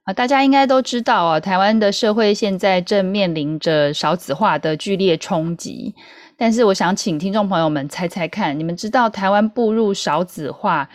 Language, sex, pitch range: Chinese, female, 160-215 Hz